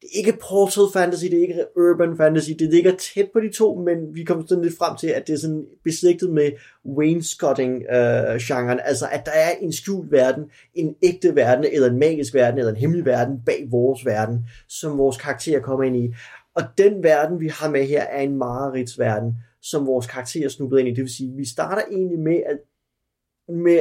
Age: 30-49